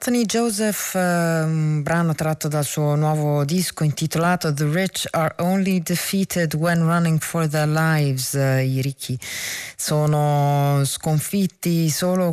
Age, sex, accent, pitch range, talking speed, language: 30-49, female, native, 150-180 Hz, 125 wpm, Italian